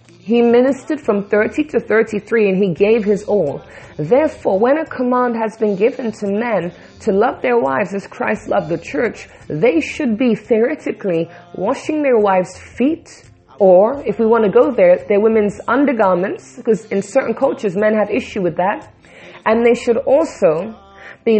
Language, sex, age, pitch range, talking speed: English, female, 30-49, 205-255 Hz, 170 wpm